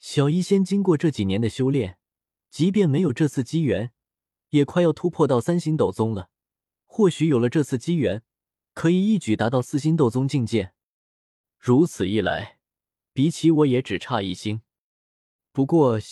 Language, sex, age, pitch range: Chinese, male, 20-39, 110-160 Hz